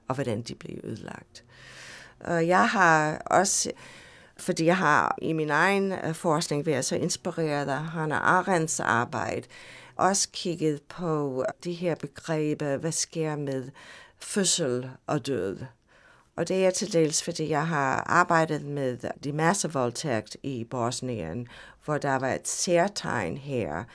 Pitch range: 130-170 Hz